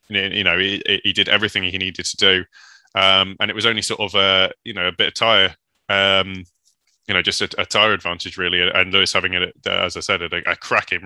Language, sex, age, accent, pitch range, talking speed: English, male, 20-39, British, 90-100 Hz, 235 wpm